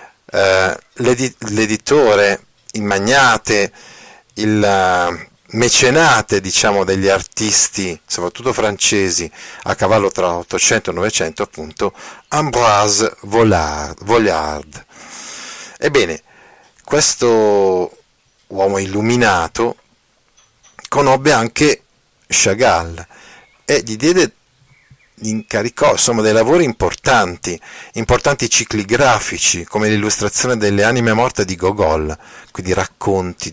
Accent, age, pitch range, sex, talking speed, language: native, 50-69, 90-115 Hz, male, 80 wpm, Italian